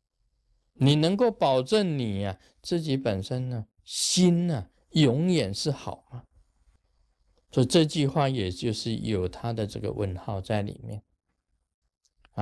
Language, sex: Chinese, male